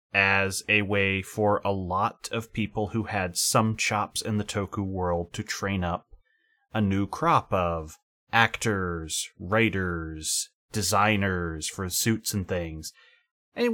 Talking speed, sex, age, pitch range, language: 140 wpm, male, 30-49, 95-130 Hz, English